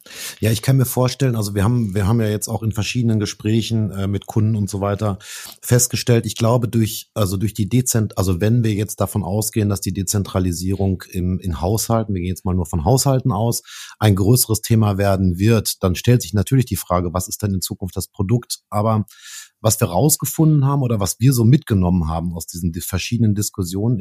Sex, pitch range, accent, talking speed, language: male, 95-115 Hz, German, 205 wpm, German